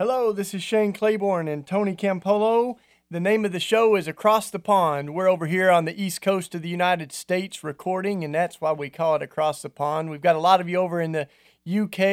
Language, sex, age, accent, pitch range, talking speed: English, male, 40-59, American, 155-195 Hz, 235 wpm